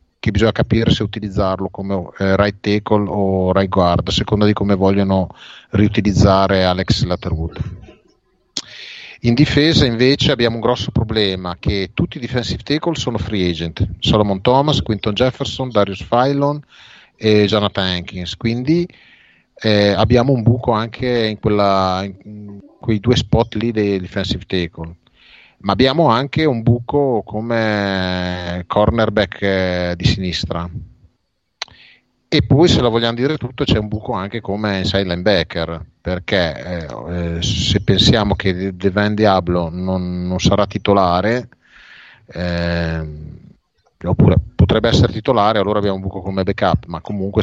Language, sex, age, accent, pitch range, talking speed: Italian, male, 30-49, native, 90-115 Hz, 135 wpm